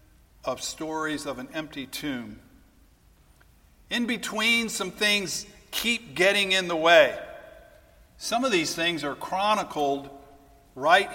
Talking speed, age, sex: 120 wpm, 50-69, male